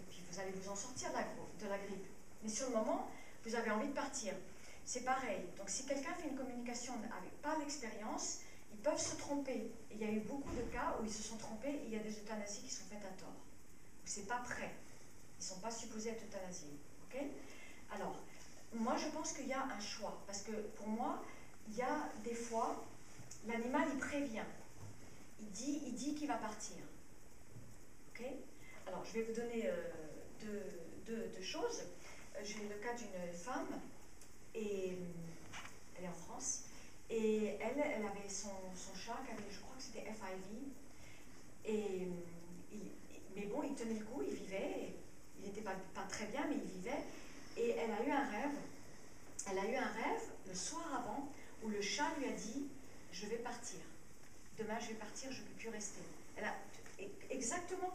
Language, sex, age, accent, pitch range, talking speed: French, female, 40-59, French, 205-265 Hz, 190 wpm